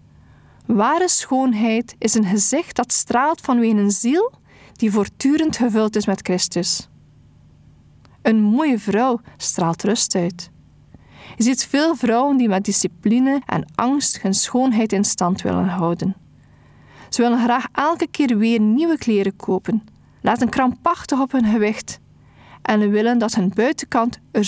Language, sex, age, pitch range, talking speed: Dutch, female, 40-59, 210-255 Hz, 140 wpm